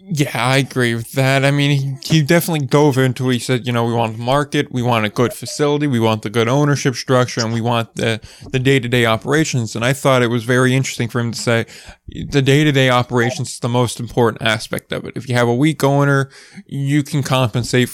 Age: 20-39